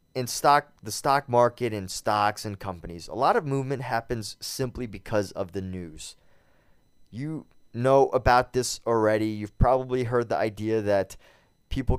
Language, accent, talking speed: English, American, 155 wpm